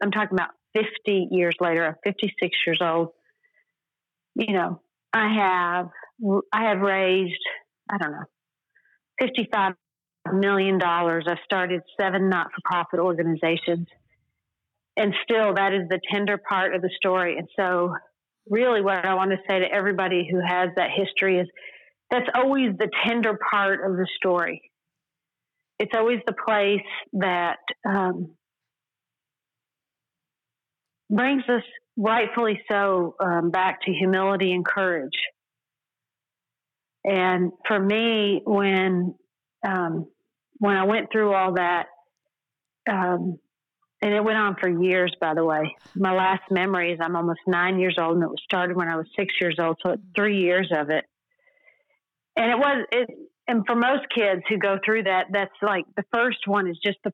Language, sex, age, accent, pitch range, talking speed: English, female, 40-59, American, 175-210 Hz, 145 wpm